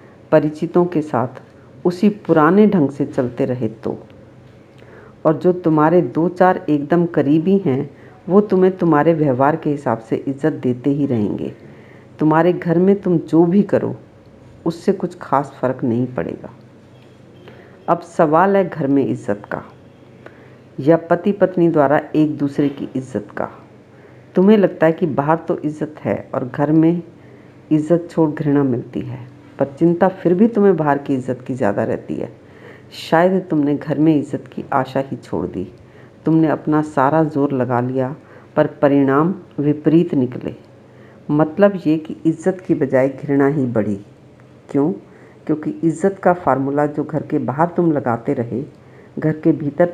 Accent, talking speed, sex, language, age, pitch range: native, 155 wpm, female, Hindi, 50-69, 135-165 Hz